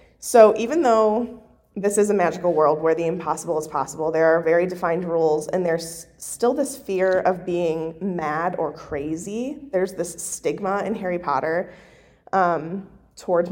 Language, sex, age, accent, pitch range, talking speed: English, female, 20-39, American, 160-195 Hz, 160 wpm